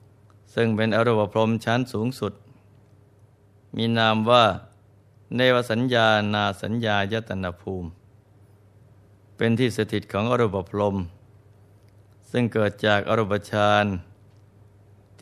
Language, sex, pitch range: Thai, male, 100-110 Hz